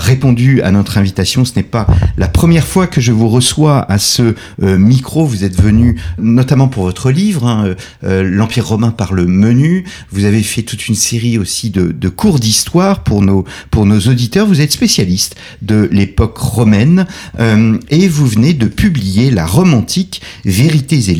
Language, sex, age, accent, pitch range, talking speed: French, male, 40-59, French, 100-140 Hz, 180 wpm